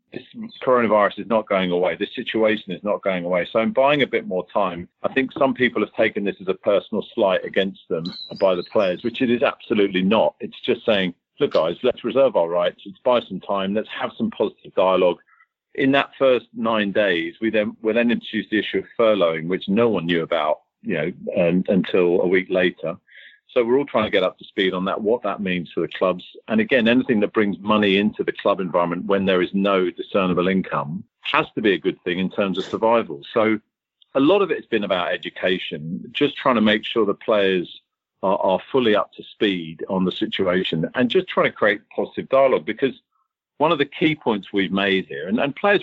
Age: 40-59